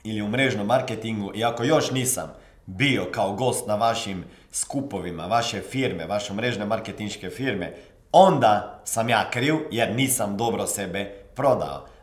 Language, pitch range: Croatian, 105-140 Hz